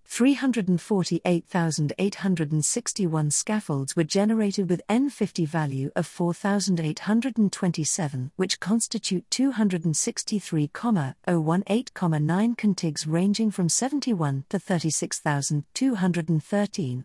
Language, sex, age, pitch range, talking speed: English, female, 50-69, 155-205 Hz, 65 wpm